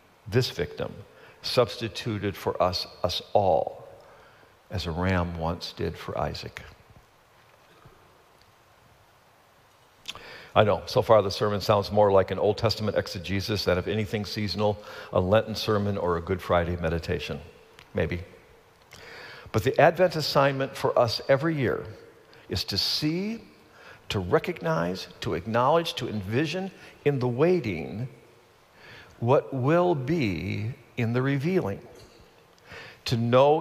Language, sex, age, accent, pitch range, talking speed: English, male, 50-69, American, 100-155 Hz, 120 wpm